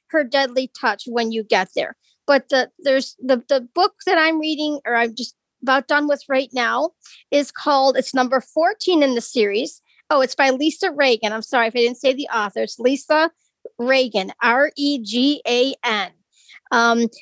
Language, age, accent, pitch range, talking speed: English, 40-59, American, 245-310 Hz, 170 wpm